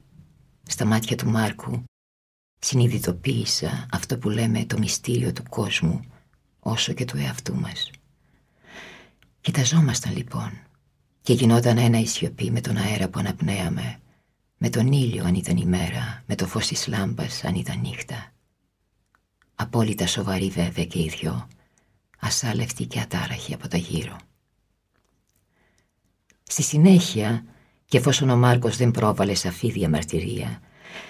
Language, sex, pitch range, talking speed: Greek, female, 95-135 Hz, 125 wpm